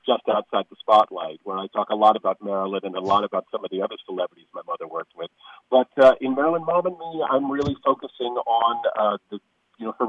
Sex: male